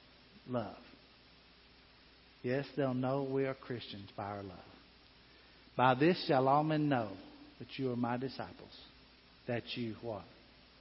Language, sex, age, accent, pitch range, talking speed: English, male, 60-79, American, 115-145 Hz, 135 wpm